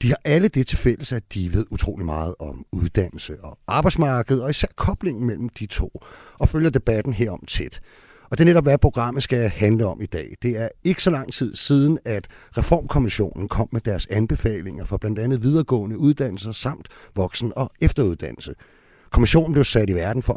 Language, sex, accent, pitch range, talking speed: Danish, male, native, 100-135 Hz, 190 wpm